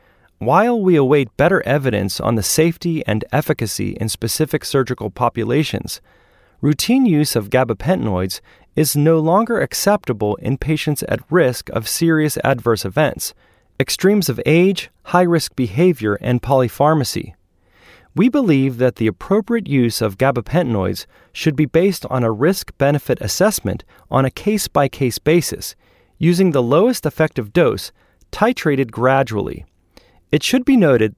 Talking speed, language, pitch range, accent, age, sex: 130 wpm, English, 115-165 Hz, American, 30-49, male